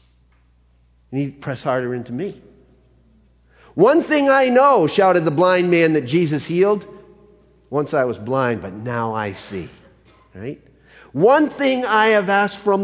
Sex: male